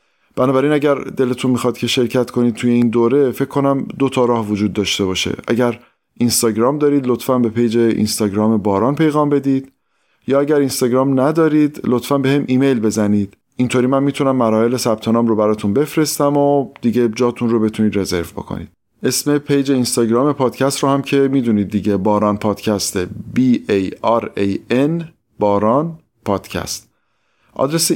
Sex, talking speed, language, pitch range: male, 155 wpm, Persian, 110-140 Hz